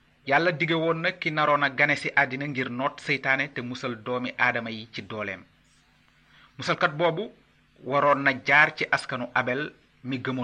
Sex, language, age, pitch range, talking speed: male, Italian, 30-49, 125-165 Hz, 115 wpm